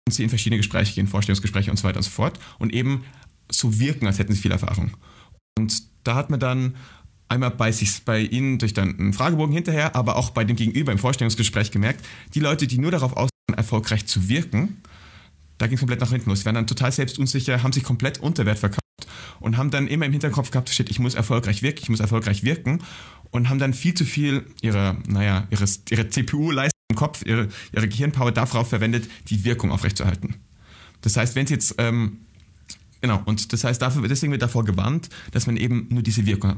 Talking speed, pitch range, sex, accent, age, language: 210 wpm, 105-125 Hz, male, German, 30-49, German